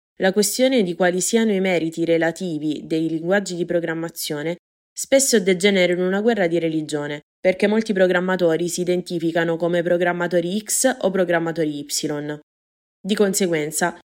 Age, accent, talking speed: 20-39, native, 135 wpm